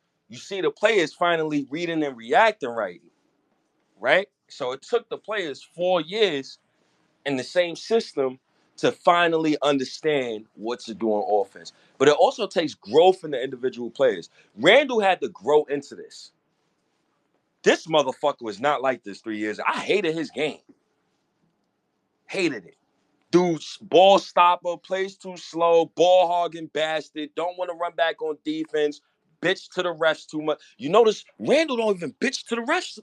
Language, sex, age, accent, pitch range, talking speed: English, male, 30-49, American, 120-190 Hz, 160 wpm